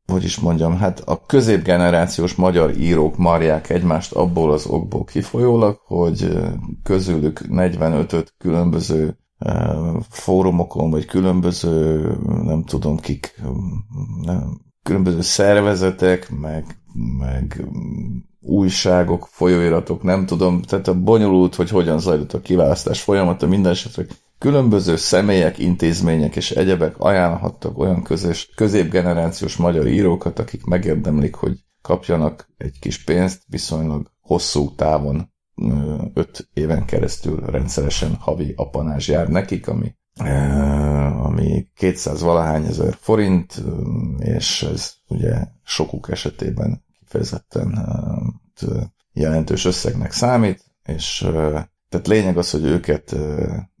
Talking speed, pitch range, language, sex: 105 wpm, 75-95 Hz, Hungarian, male